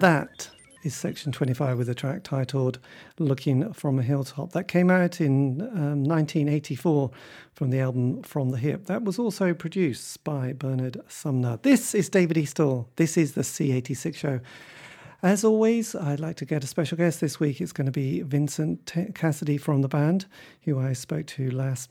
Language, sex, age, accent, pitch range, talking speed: English, male, 40-59, British, 135-175 Hz, 180 wpm